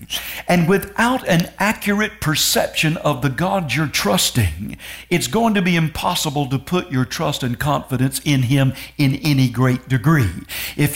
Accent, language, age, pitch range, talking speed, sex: American, English, 60-79, 130-170 Hz, 155 wpm, male